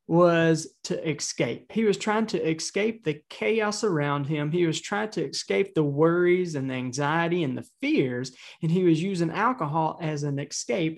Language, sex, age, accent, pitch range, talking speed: English, male, 20-39, American, 150-185 Hz, 180 wpm